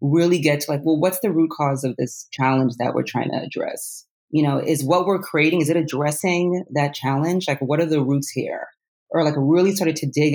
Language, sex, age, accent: English, female, 30-49, American